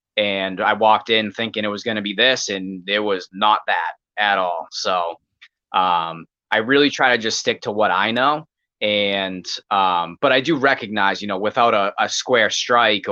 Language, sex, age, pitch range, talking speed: English, male, 20-39, 100-125 Hz, 195 wpm